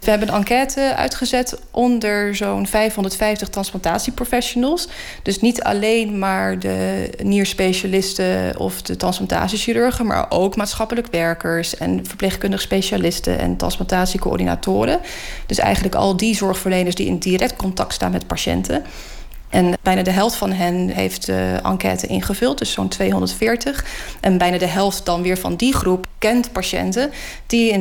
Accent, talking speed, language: Dutch, 140 wpm, Dutch